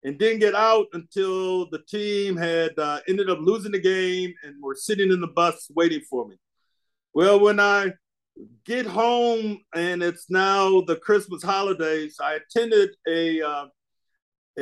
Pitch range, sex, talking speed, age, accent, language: 170-220 Hz, male, 155 wpm, 50-69, American, English